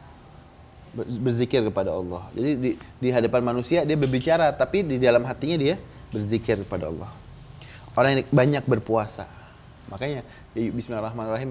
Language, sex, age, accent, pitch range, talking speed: Indonesian, male, 20-39, native, 110-145 Hz, 130 wpm